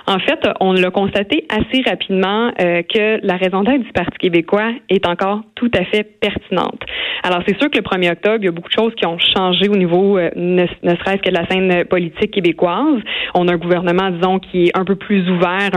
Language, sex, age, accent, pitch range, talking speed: French, female, 20-39, Canadian, 175-210 Hz, 230 wpm